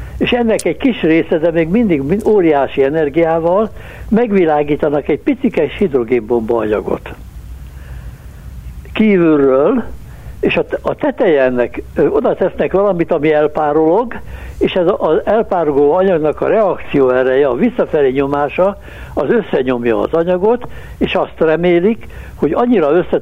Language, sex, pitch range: Hungarian, male, 130-200 Hz